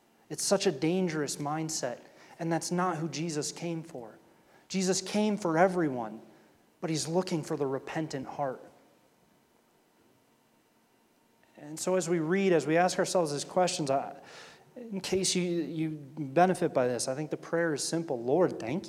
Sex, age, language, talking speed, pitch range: male, 30-49, English, 160 wpm, 150-185 Hz